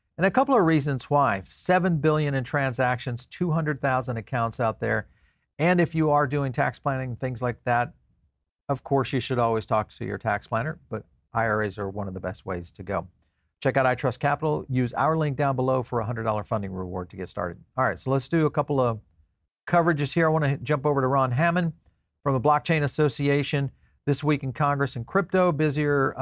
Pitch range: 110-140 Hz